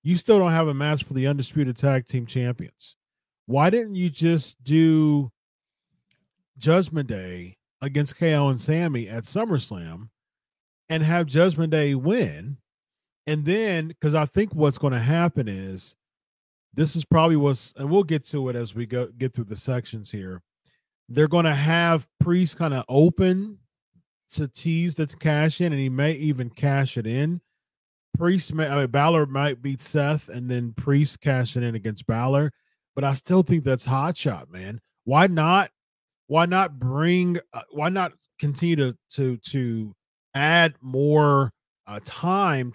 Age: 40-59